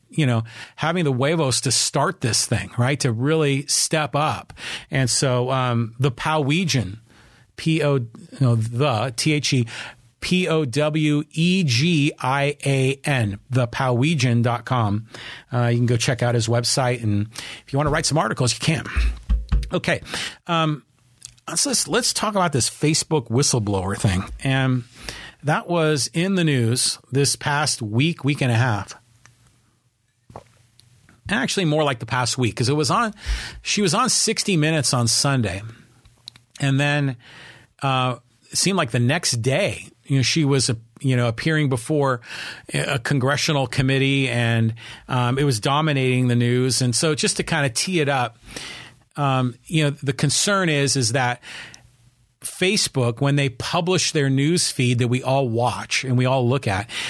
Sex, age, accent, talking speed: male, 40-59, American, 160 wpm